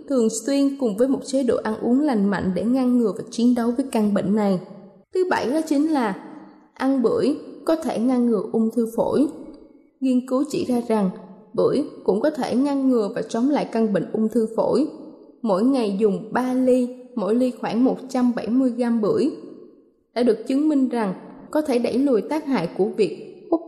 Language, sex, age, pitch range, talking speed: Vietnamese, female, 20-39, 215-270 Hz, 200 wpm